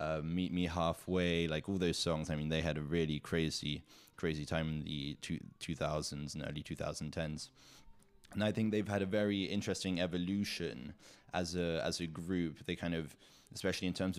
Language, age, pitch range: English, 20-39, 80-95 Hz